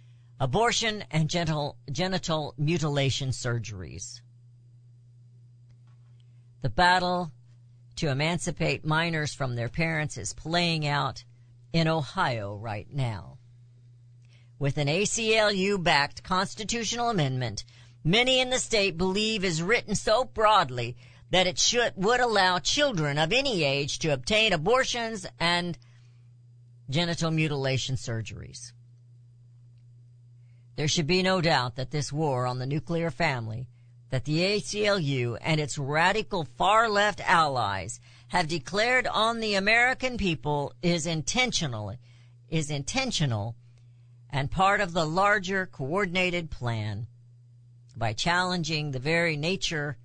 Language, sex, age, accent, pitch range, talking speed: English, female, 50-69, American, 120-185 Hz, 110 wpm